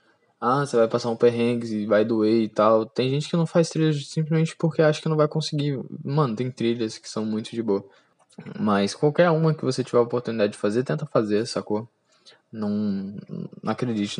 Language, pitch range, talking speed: Portuguese, 110-145 Hz, 205 wpm